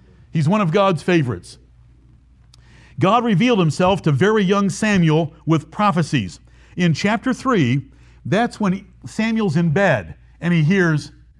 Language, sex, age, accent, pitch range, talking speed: English, male, 60-79, American, 135-200 Hz, 130 wpm